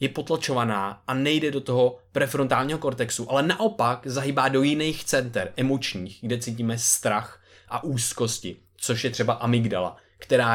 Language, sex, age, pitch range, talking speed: Czech, male, 20-39, 115-140 Hz, 140 wpm